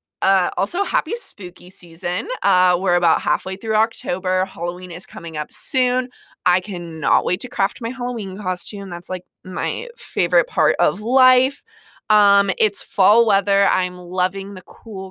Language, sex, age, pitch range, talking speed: English, female, 20-39, 190-255 Hz, 155 wpm